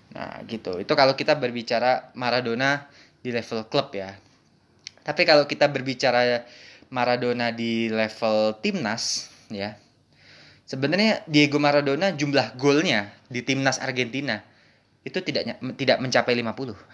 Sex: male